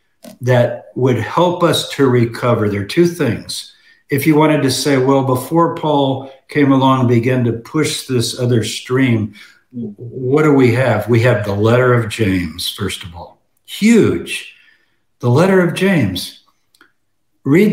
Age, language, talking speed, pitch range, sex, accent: 60-79, English, 155 wpm, 125-160 Hz, male, American